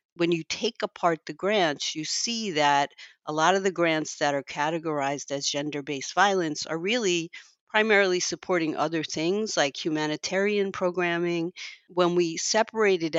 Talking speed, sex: 145 wpm, female